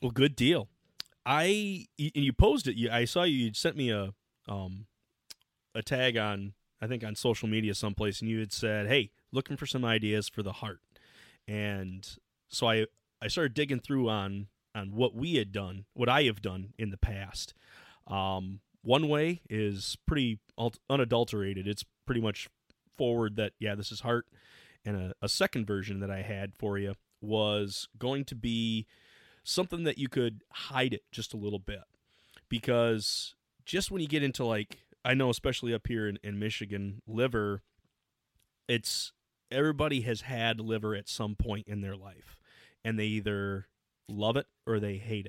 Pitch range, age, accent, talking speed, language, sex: 100-120 Hz, 30-49, American, 175 wpm, English, male